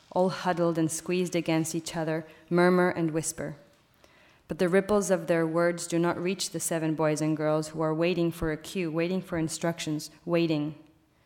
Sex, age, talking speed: female, 20-39, 180 wpm